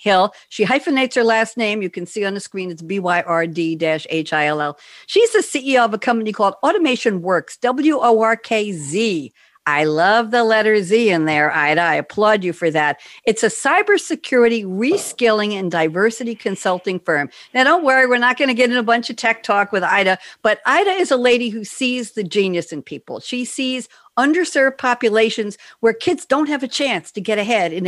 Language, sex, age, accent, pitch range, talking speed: English, female, 60-79, American, 175-240 Hz, 185 wpm